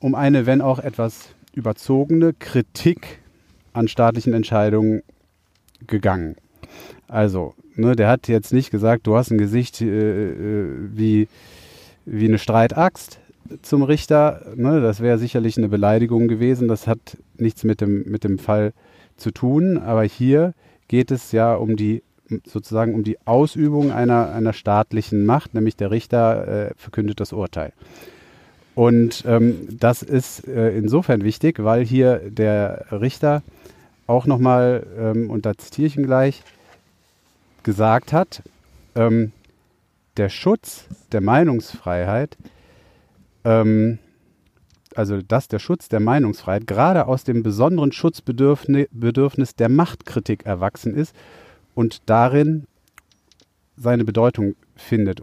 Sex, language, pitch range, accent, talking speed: male, German, 105-130 Hz, German, 125 wpm